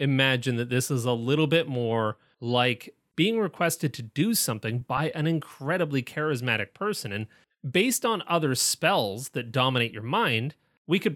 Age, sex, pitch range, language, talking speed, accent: 30-49, male, 125-165 Hz, English, 160 wpm, American